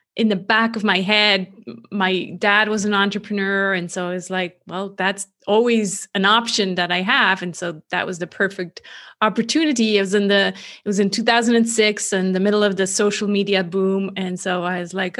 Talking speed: 200 wpm